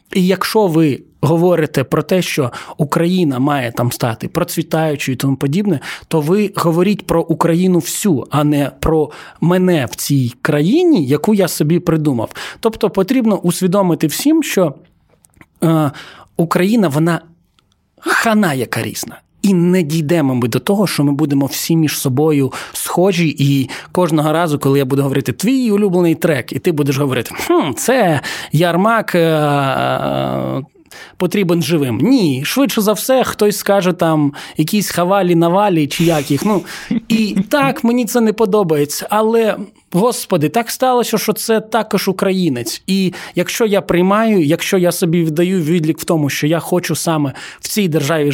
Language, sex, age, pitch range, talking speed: Ukrainian, male, 20-39, 150-195 Hz, 150 wpm